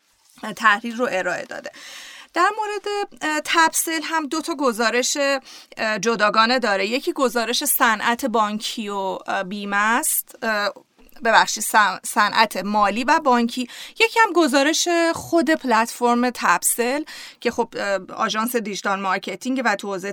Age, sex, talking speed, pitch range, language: 30-49, female, 115 wpm, 210-270 Hz, Persian